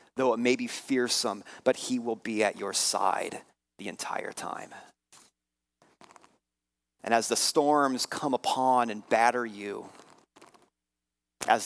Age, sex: 30-49, male